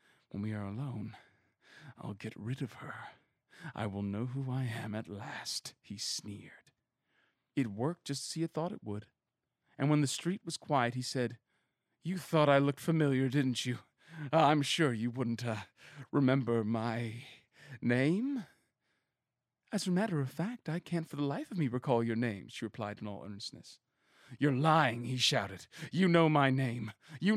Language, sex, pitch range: English, male, 110-150 Hz